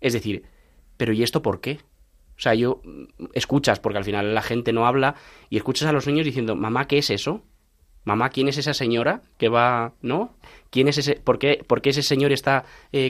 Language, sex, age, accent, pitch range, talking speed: Spanish, male, 20-39, Spanish, 115-145 Hz, 215 wpm